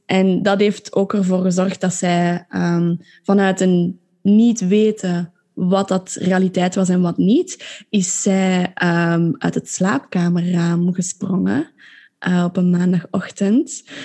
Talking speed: 120 wpm